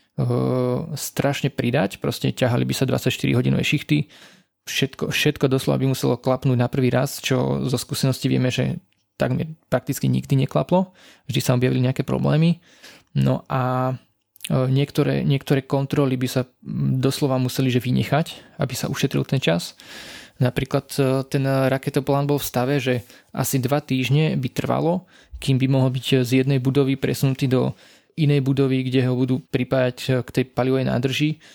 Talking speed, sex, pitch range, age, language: 150 wpm, male, 125-140 Hz, 20-39, Slovak